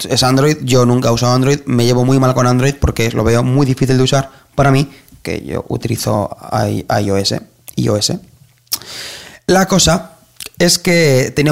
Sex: male